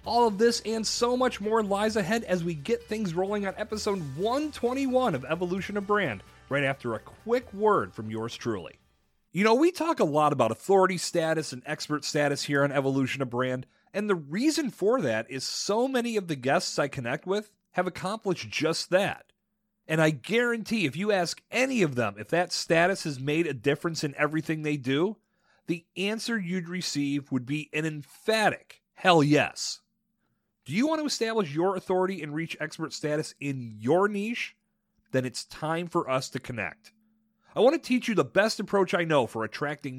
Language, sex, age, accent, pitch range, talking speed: English, male, 30-49, American, 140-205 Hz, 190 wpm